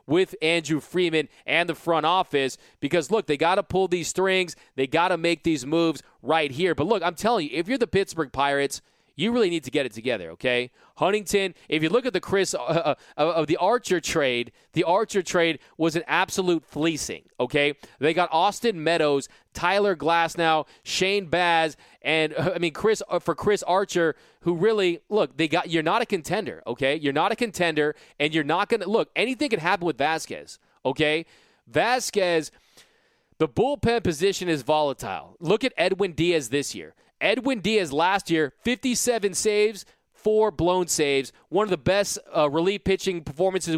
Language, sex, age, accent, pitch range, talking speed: English, male, 30-49, American, 160-205 Hz, 185 wpm